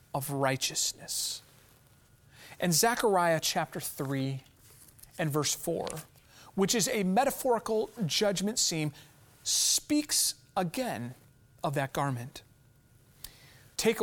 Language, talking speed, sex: English, 85 wpm, male